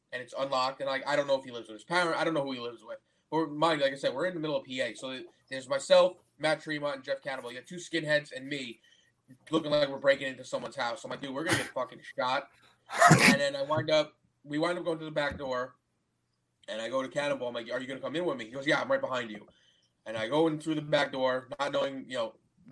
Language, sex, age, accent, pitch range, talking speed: English, male, 20-39, American, 120-170 Hz, 295 wpm